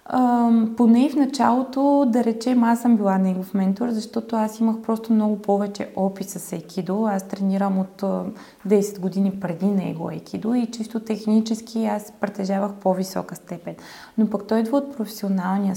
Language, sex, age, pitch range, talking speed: Bulgarian, female, 20-39, 195-230 Hz, 160 wpm